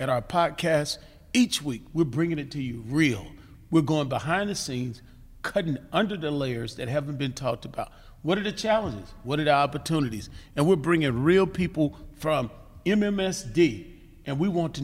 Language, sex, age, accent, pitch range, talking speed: English, male, 40-59, American, 125-170 Hz, 180 wpm